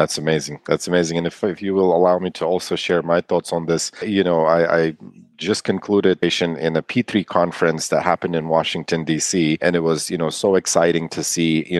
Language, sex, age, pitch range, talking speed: English, male, 40-59, 80-90 Hz, 225 wpm